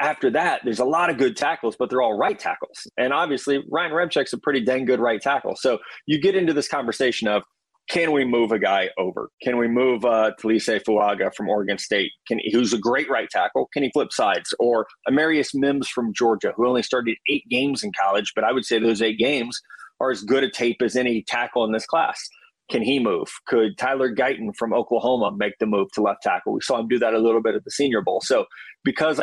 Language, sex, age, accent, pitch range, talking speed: English, male, 30-49, American, 110-130 Hz, 230 wpm